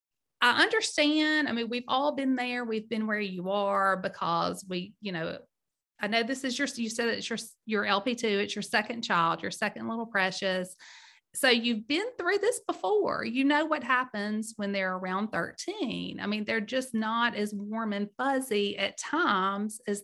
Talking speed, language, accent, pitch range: 185 wpm, English, American, 205-260 Hz